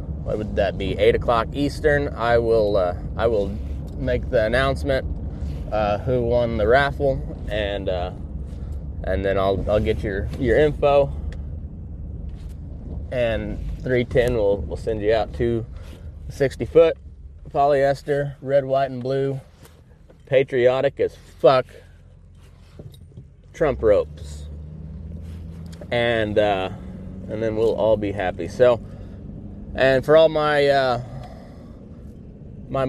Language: English